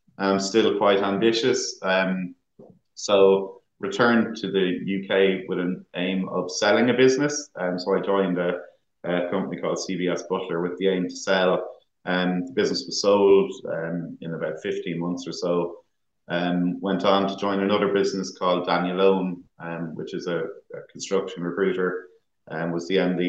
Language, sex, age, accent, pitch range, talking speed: English, male, 30-49, Irish, 90-100 Hz, 180 wpm